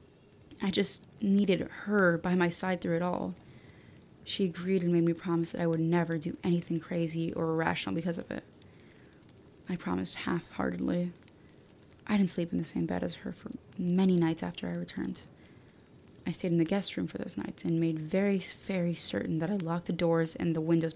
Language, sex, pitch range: English, female, 165-180 Hz